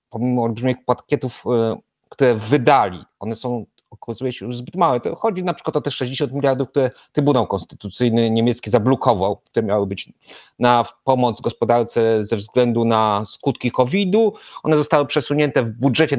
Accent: native